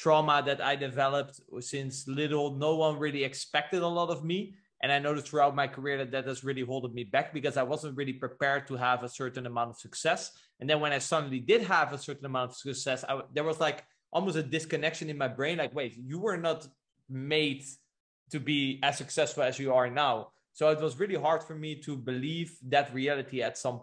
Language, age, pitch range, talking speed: English, 20-39, 135-160 Hz, 220 wpm